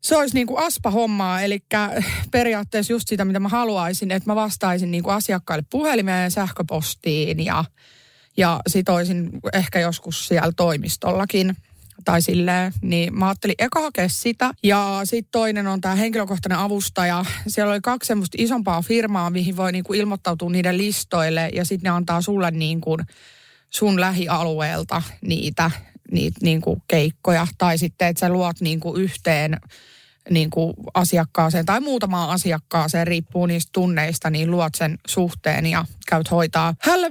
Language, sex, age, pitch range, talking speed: Finnish, female, 30-49, 170-215 Hz, 145 wpm